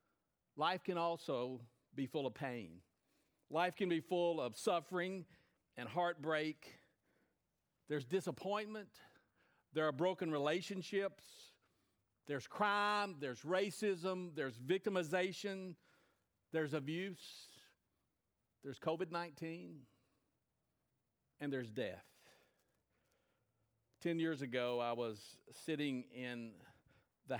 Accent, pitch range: American, 120-160 Hz